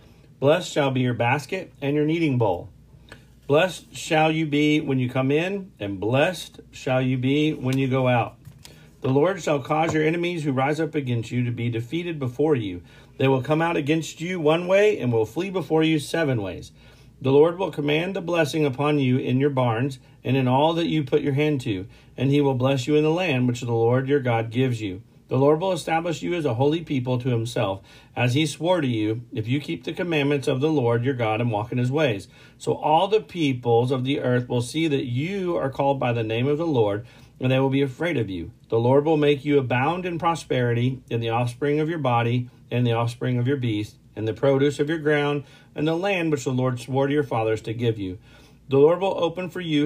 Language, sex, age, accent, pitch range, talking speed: English, male, 50-69, American, 125-155 Hz, 235 wpm